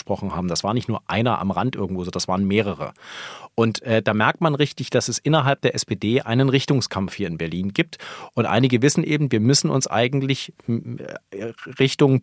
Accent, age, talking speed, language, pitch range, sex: German, 40-59, 185 wpm, German, 110-135 Hz, male